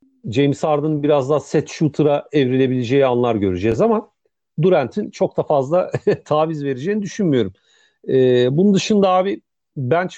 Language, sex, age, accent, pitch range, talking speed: Turkish, male, 40-59, native, 125-160 Hz, 130 wpm